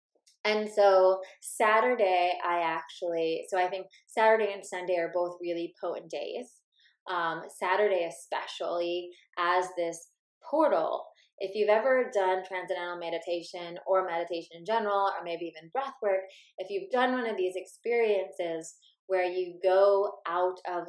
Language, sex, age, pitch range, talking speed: English, female, 20-39, 175-210 Hz, 140 wpm